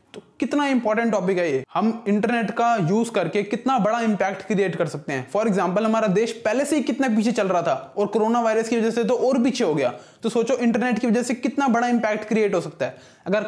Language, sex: Hindi, male